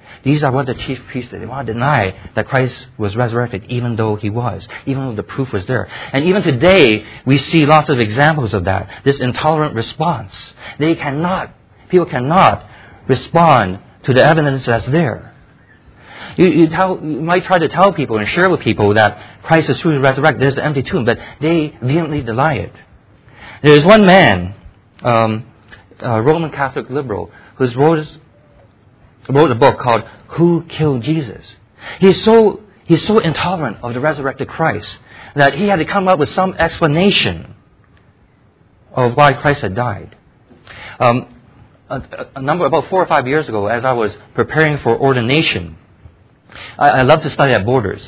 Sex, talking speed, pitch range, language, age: male, 170 wpm, 110-155 Hz, English, 40-59